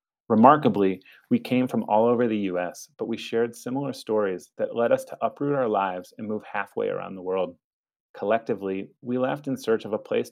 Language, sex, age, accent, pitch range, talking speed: English, male, 30-49, American, 105-135 Hz, 200 wpm